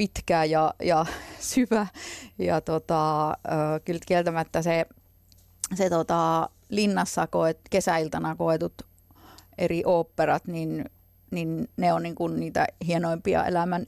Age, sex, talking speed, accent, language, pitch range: 30-49, female, 110 wpm, native, Finnish, 155-185 Hz